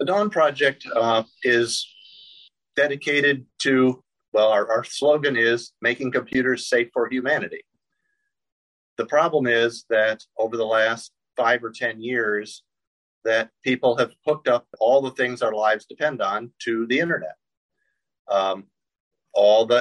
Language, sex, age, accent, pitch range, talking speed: English, male, 50-69, American, 110-155 Hz, 135 wpm